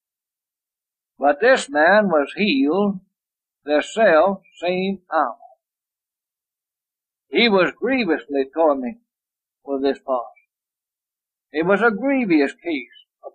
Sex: male